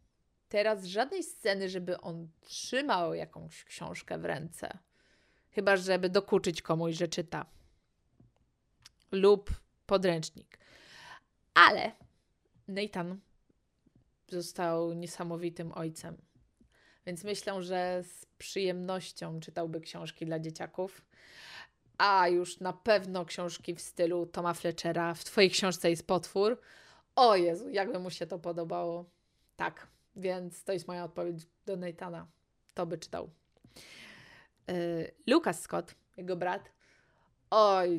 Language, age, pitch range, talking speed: Polish, 20-39, 170-190 Hz, 110 wpm